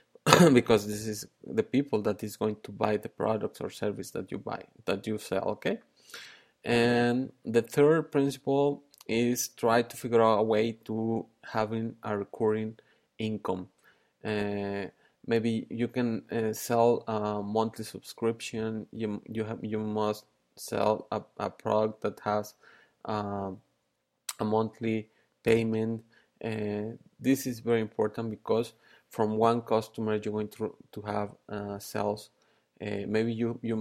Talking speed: 145 wpm